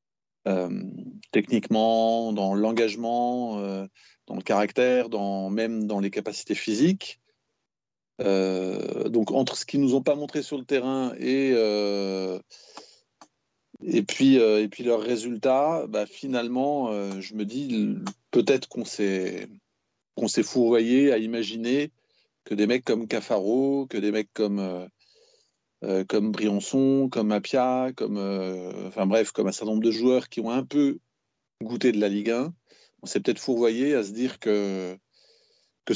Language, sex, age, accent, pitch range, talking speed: French, male, 40-59, French, 105-130 Hz, 150 wpm